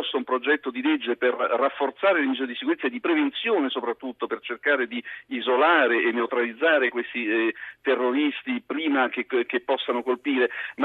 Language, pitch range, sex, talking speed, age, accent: Italian, 125-180 Hz, male, 165 wpm, 50-69, native